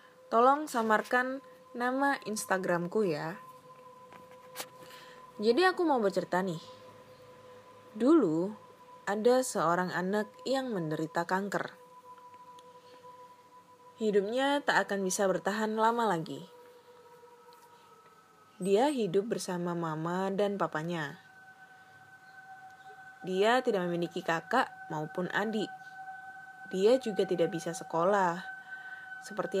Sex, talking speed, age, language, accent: female, 85 wpm, 20-39, Indonesian, native